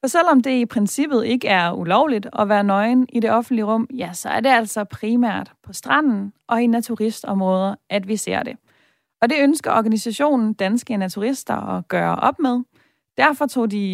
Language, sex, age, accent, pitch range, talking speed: Danish, female, 30-49, native, 195-255 Hz, 185 wpm